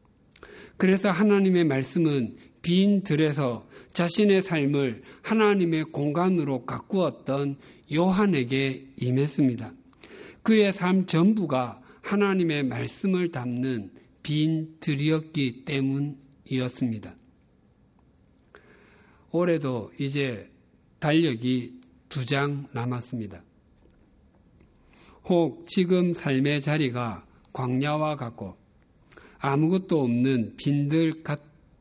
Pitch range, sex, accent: 125-165 Hz, male, native